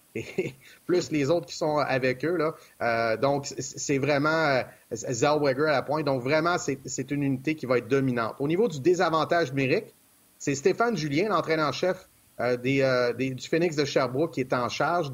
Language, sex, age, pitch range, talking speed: French, male, 30-49, 135-165 Hz, 200 wpm